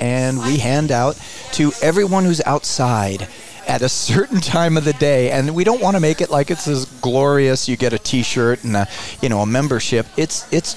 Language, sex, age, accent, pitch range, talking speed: English, male, 40-59, American, 125-160 Hz, 210 wpm